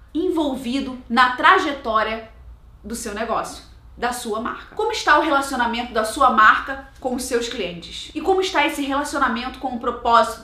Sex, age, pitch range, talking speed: female, 20-39, 230-310 Hz, 160 wpm